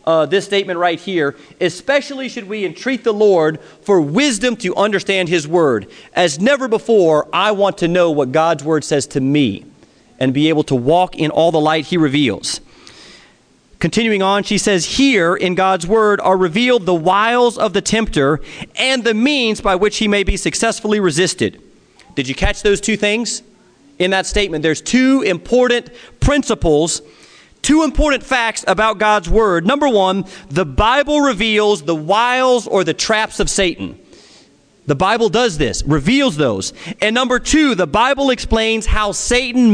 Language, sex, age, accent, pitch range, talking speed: English, male, 40-59, American, 165-225 Hz, 170 wpm